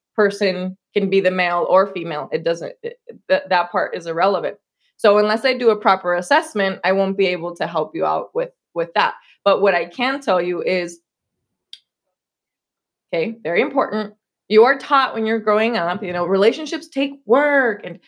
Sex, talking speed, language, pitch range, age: female, 185 wpm, English, 195-250 Hz, 20-39